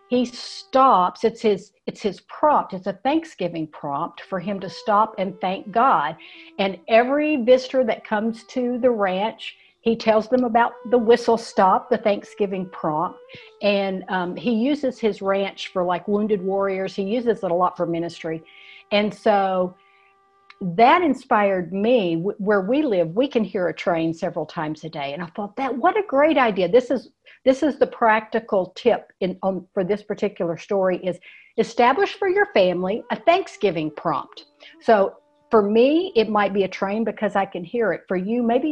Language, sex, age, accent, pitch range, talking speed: English, female, 60-79, American, 190-255 Hz, 180 wpm